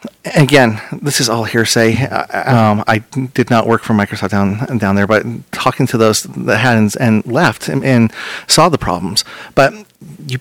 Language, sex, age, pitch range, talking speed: English, male, 40-59, 105-130 Hz, 180 wpm